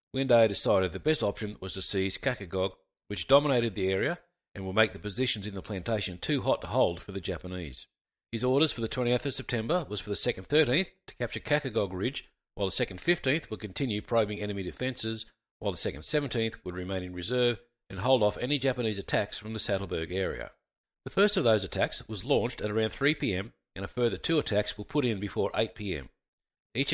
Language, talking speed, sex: English, 205 wpm, male